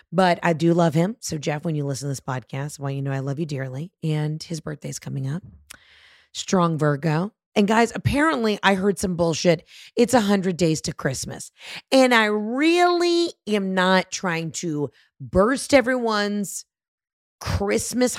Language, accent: English, American